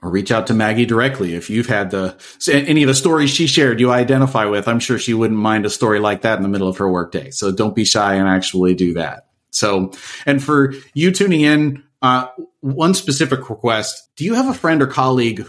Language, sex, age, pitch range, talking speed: English, male, 30-49, 100-130 Hz, 235 wpm